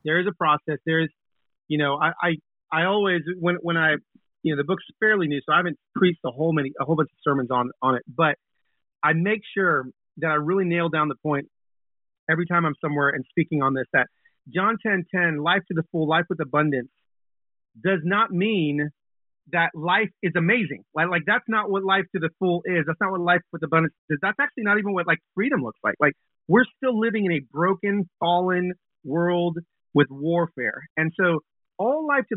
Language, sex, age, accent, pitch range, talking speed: English, male, 30-49, American, 150-190 Hz, 215 wpm